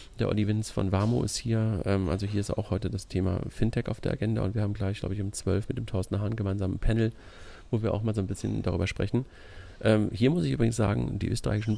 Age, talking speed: 40-59, 245 wpm